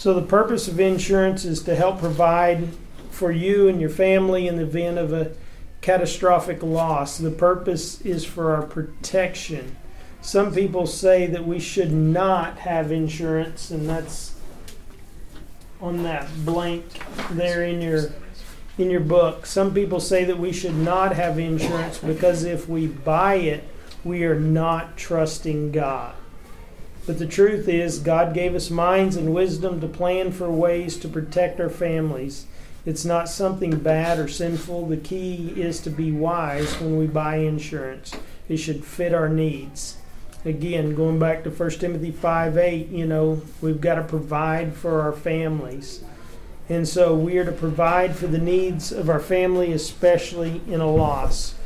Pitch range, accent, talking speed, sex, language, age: 155-175 Hz, American, 160 wpm, male, English, 40-59